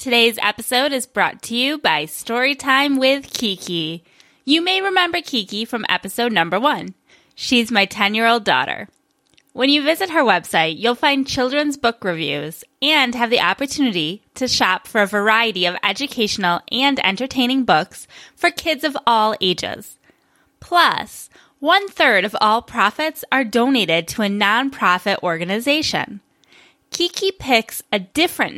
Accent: American